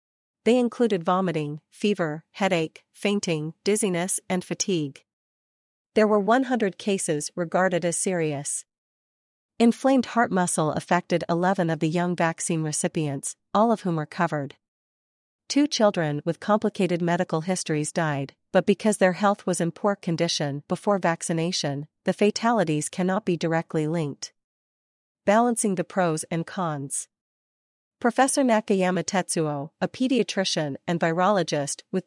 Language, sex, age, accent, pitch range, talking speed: English, female, 40-59, American, 165-205 Hz, 125 wpm